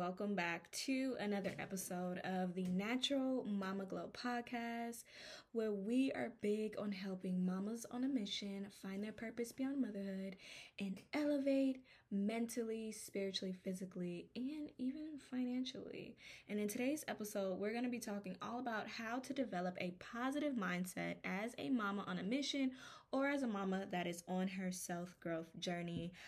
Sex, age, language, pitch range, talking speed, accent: female, 10-29, English, 190-245 Hz, 155 wpm, American